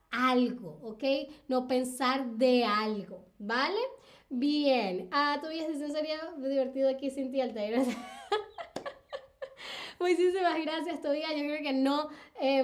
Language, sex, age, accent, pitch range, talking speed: Spanish, female, 10-29, American, 240-295 Hz, 120 wpm